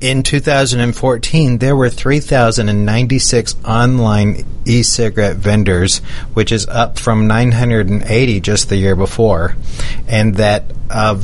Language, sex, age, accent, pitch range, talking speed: English, male, 30-49, American, 100-120 Hz, 105 wpm